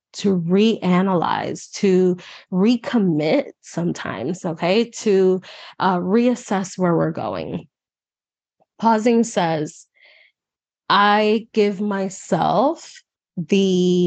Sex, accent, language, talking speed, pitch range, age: female, American, English, 75 wpm, 175-210 Hz, 20-39